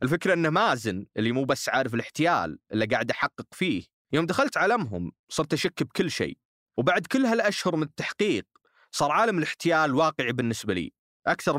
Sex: male